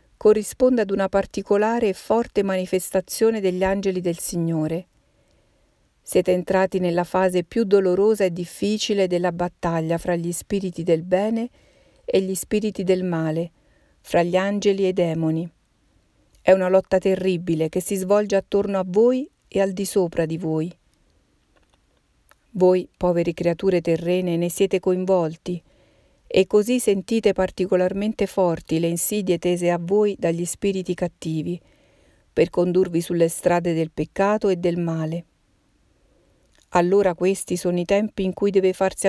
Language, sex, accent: Italian, female, native